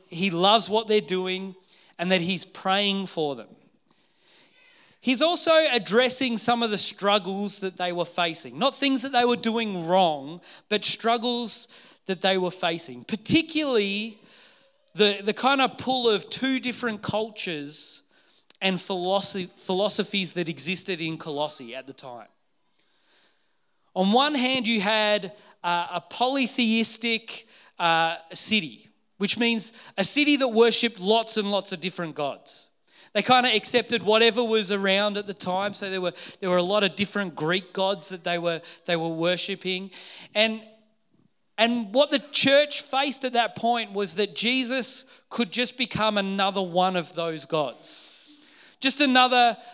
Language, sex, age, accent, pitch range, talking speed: English, male, 30-49, Australian, 185-235 Hz, 150 wpm